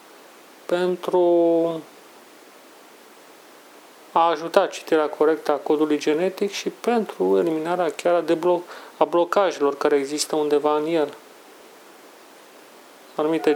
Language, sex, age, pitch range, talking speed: Romanian, male, 30-49, 155-180 Hz, 100 wpm